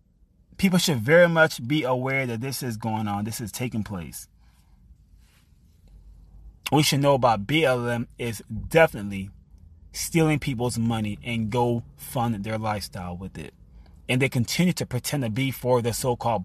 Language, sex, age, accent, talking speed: English, male, 20-39, American, 155 wpm